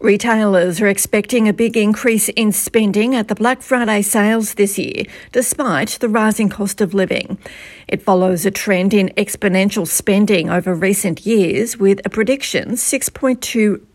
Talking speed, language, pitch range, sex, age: 150 wpm, English, 165-210 Hz, female, 40-59